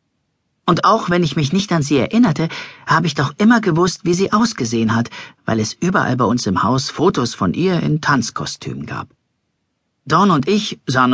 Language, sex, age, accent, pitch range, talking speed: German, male, 40-59, German, 125-180 Hz, 190 wpm